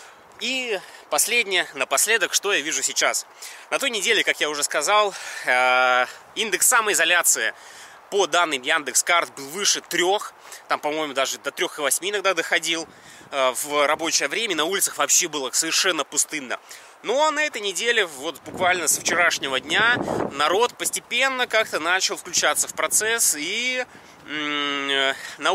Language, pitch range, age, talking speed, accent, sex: Russian, 145-235 Hz, 20-39, 135 wpm, native, male